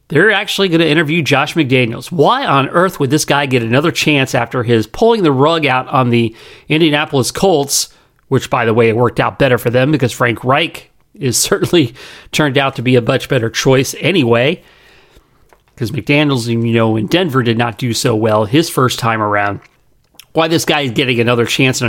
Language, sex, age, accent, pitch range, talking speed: English, male, 40-59, American, 120-170 Hz, 200 wpm